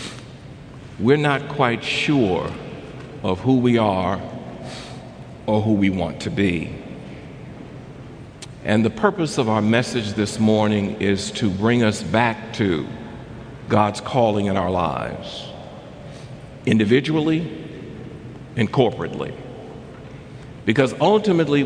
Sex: male